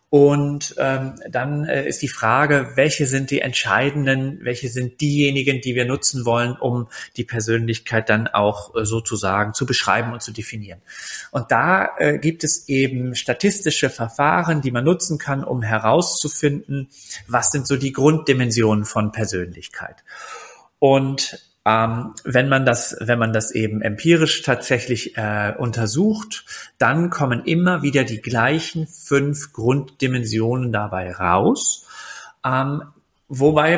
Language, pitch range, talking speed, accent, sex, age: German, 115-145 Hz, 135 wpm, German, male, 30-49